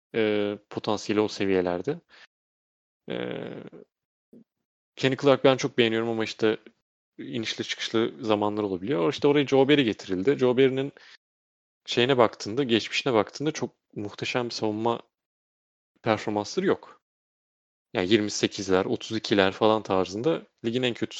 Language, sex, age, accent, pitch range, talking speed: Turkish, male, 30-49, native, 95-130 Hz, 110 wpm